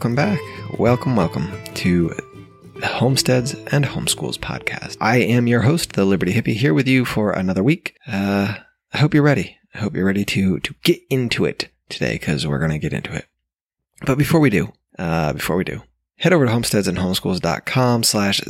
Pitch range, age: 100-140 Hz, 20-39